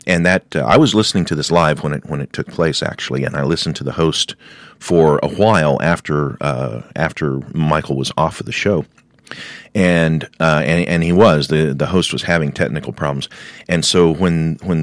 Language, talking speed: English, 205 wpm